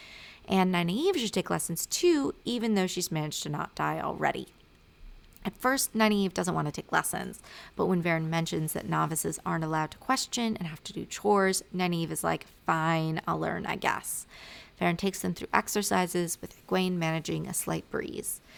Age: 30-49